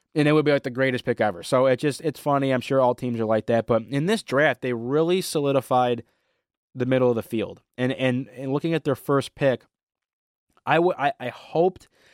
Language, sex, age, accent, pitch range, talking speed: English, male, 20-39, American, 110-130 Hz, 225 wpm